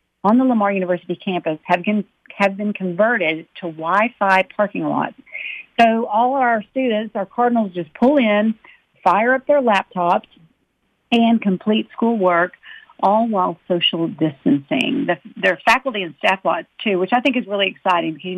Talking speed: 160 wpm